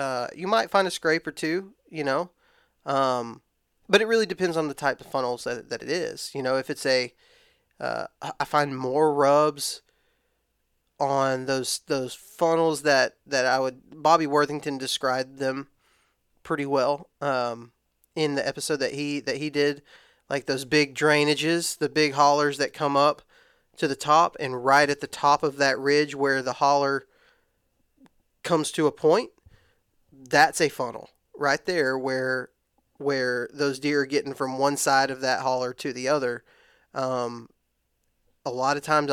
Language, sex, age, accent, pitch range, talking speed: English, male, 20-39, American, 130-150 Hz, 170 wpm